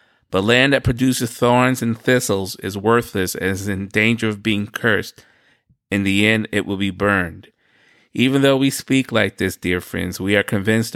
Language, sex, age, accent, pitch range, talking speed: English, male, 30-49, American, 95-115 Hz, 185 wpm